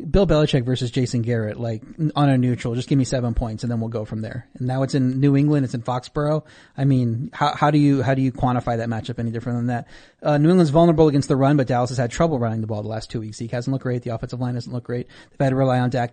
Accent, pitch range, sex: American, 120-140 Hz, male